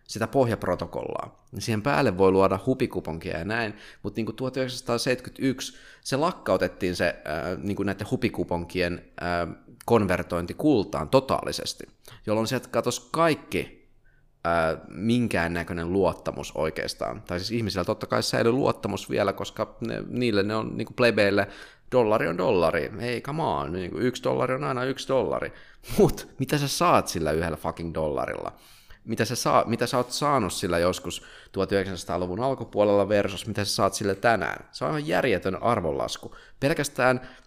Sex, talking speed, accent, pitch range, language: male, 145 wpm, native, 85-120 Hz, Finnish